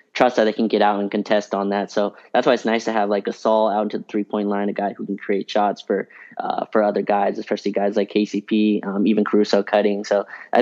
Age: 20-39